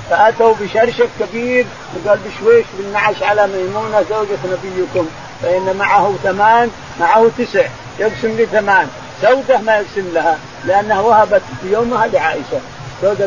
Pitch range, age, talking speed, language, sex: 180-230 Hz, 50-69, 120 wpm, Arabic, male